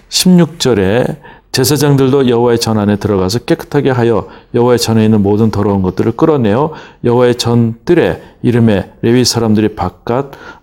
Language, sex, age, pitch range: Korean, male, 40-59, 110-145 Hz